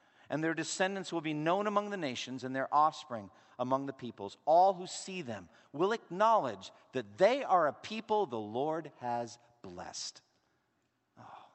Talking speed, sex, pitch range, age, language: 160 wpm, male, 105-150 Hz, 50-69, English